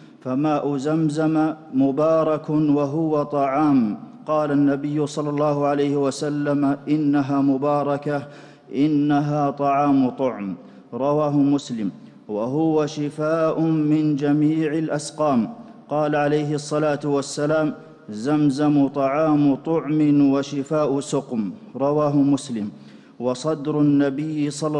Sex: male